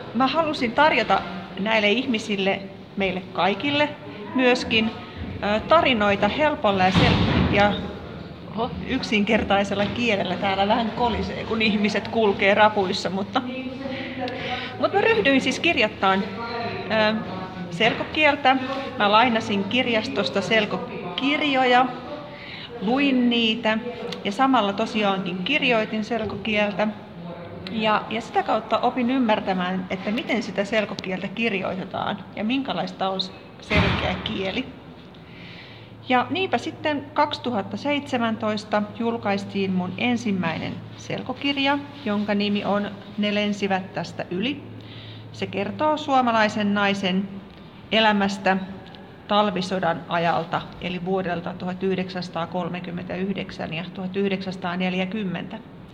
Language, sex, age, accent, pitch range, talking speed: Finnish, female, 30-49, native, 195-245 Hz, 85 wpm